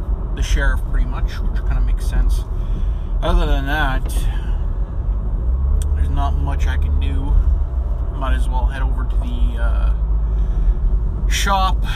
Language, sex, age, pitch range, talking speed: English, male, 20-39, 65-75 Hz, 130 wpm